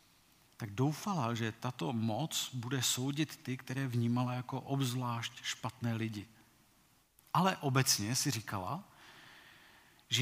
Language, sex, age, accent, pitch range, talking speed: Czech, male, 40-59, native, 115-145 Hz, 110 wpm